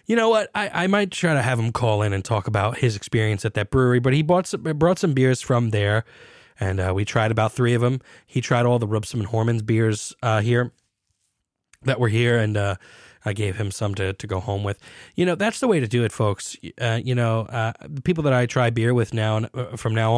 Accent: American